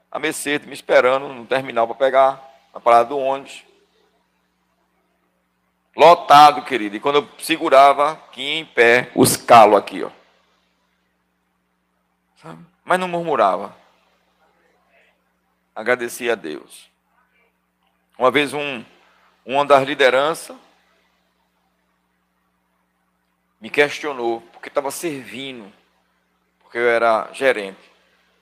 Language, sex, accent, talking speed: Portuguese, male, Brazilian, 100 wpm